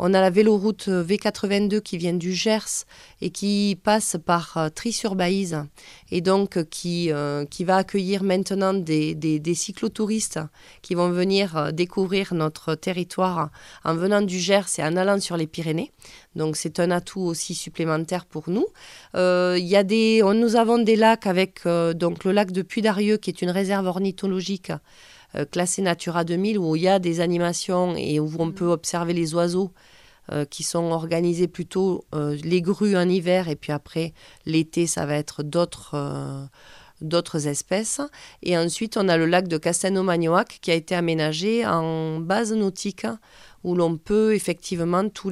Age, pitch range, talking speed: 30-49, 165-195 Hz, 165 wpm